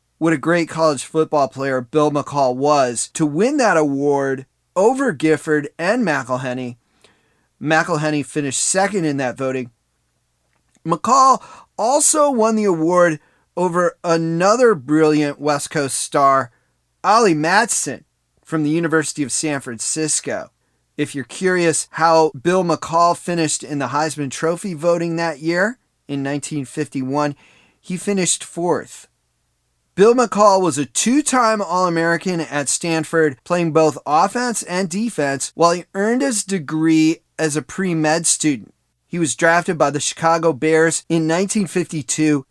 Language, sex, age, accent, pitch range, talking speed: English, male, 30-49, American, 145-180 Hz, 130 wpm